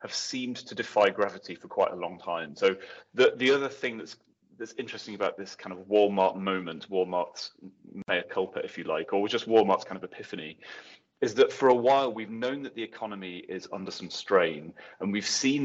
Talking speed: 205 wpm